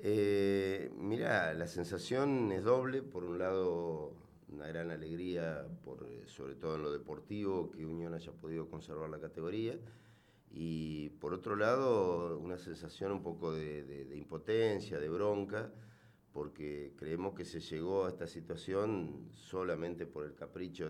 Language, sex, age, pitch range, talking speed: Spanish, male, 50-69, 80-100 Hz, 145 wpm